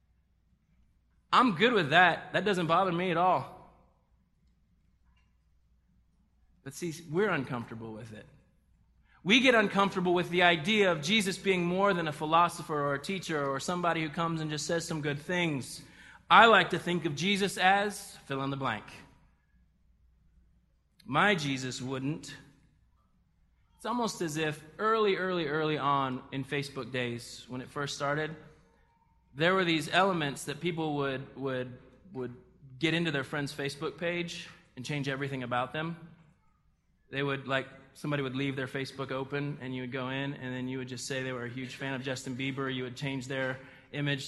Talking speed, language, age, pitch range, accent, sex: 170 wpm, English, 20-39, 135-165 Hz, American, male